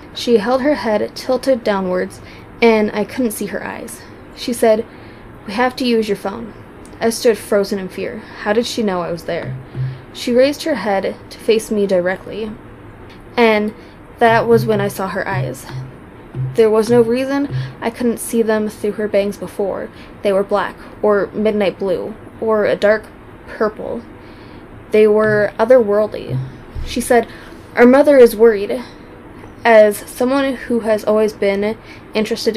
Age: 10-29